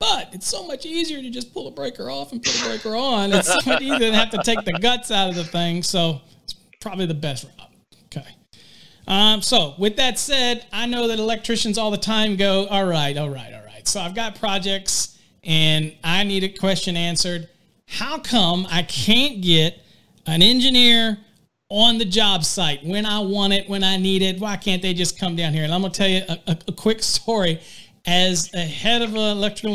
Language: English